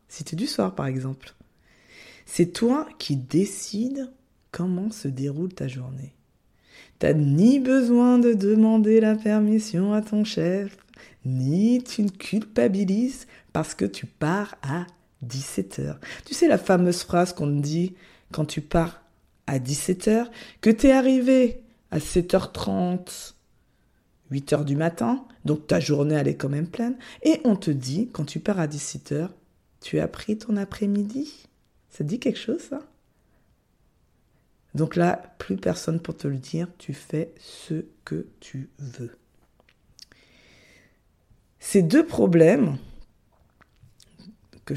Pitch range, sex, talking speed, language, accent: 145-215 Hz, female, 140 wpm, French, French